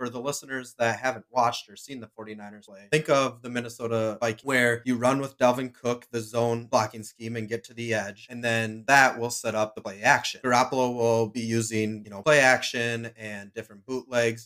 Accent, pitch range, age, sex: American, 115-135 Hz, 20-39, male